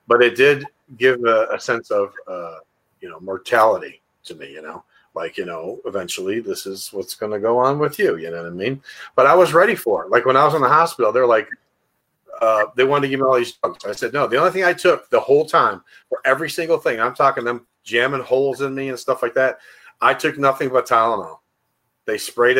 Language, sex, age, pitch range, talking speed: English, male, 40-59, 115-170 Hz, 240 wpm